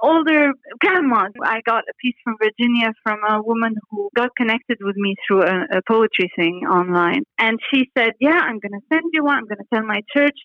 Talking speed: 205 wpm